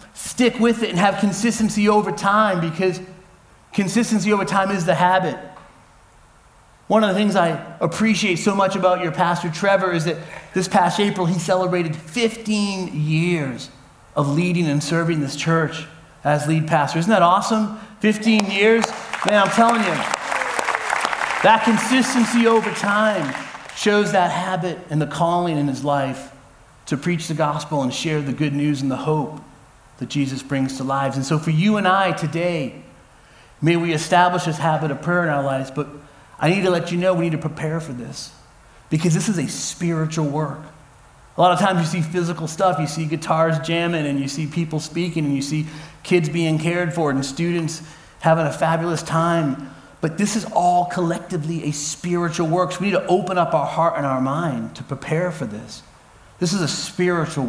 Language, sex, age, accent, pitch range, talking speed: English, male, 30-49, American, 155-190 Hz, 185 wpm